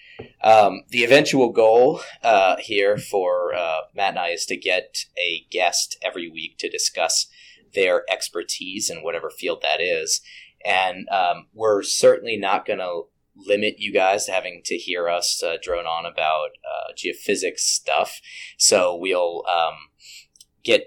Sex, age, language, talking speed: male, 30-49, English, 150 wpm